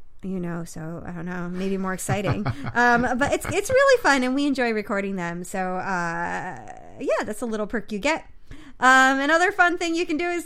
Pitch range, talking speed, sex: 200-295 Hz, 210 wpm, female